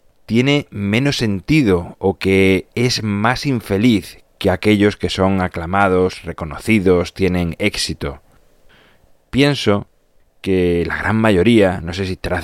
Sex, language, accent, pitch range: male, Spanish, Spanish, 90-110 Hz